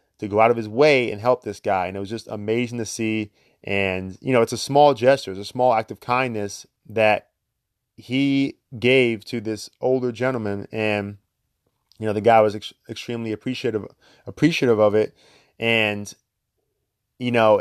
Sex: male